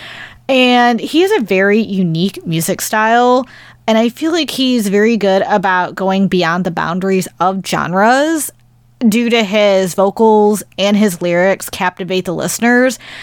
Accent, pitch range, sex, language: American, 180-225 Hz, female, English